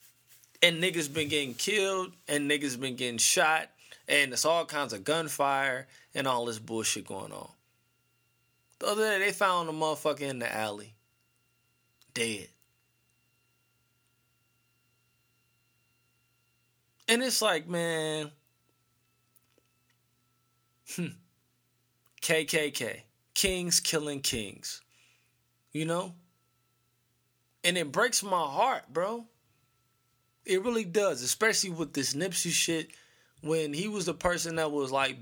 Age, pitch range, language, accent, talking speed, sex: 20-39, 120-155 Hz, English, American, 110 wpm, male